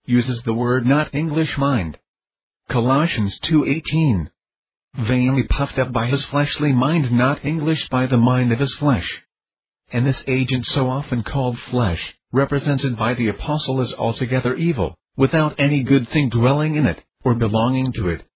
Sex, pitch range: male, 120-140 Hz